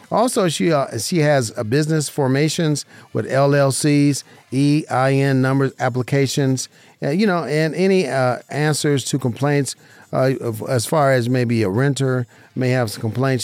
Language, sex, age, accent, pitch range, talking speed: English, male, 40-59, American, 120-155 Hz, 155 wpm